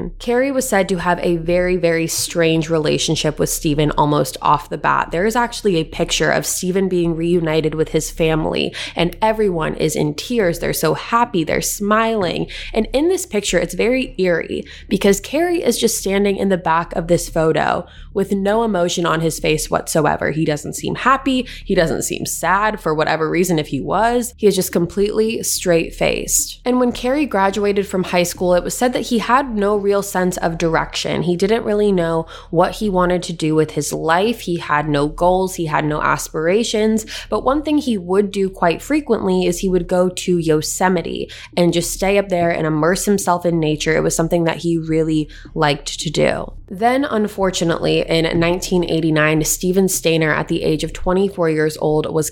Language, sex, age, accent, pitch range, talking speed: English, female, 20-39, American, 160-205 Hz, 190 wpm